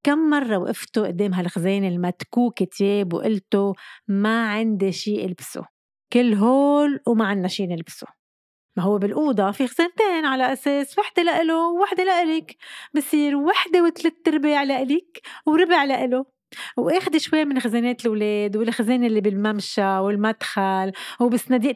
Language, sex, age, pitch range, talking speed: Arabic, female, 30-49, 210-290 Hz, 125 wpm